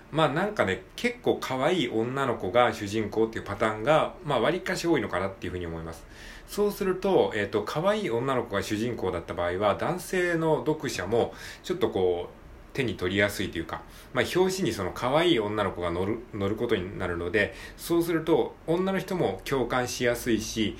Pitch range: 90-135 Hz